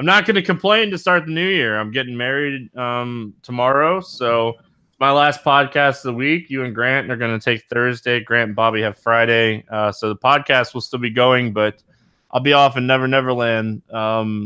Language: English